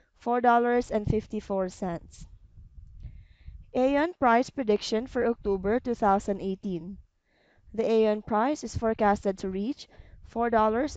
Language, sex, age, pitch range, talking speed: English, female, 20-39, 200-230 Hz, 110 wpm